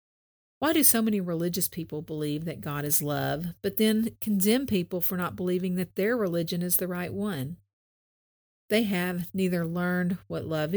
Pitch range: 145-200 Hz